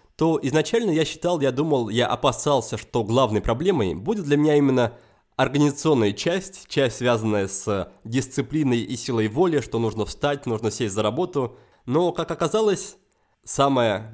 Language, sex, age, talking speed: Russian, male, 20-39, 150 wpm